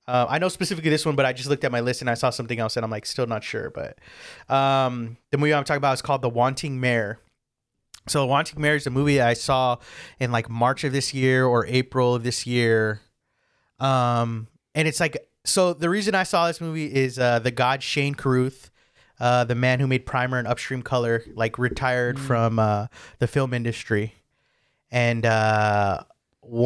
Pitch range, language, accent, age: 115-135 Hz, English, American, 30-49